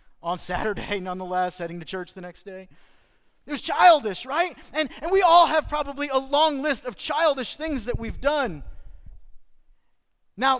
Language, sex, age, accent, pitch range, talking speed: English, male, 30-49, American, 205-300 Hz, 165 wpm